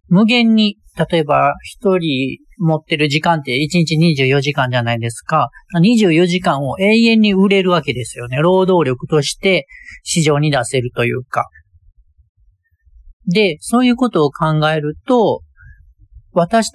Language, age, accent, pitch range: Japanese, 40-59, native, 125-195 Hz